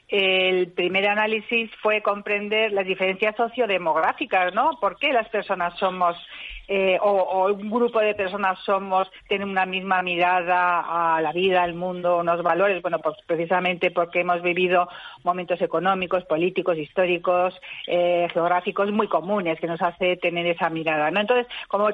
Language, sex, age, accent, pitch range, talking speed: Spanish, female, 40-59, Spanish, 170-205 Hz, 155 wpm